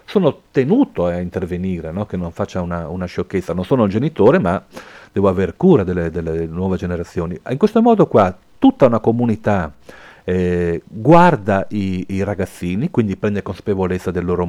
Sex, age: male, 40-59